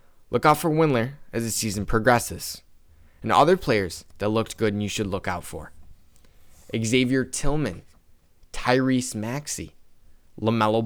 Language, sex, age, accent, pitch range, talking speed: English, male, 20-39, American, 95-125 Hz, 140 wpm